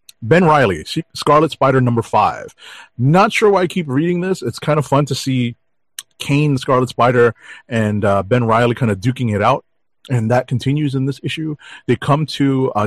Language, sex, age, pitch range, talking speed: English, male, 30-49, 100-125 Hz, 190 wpm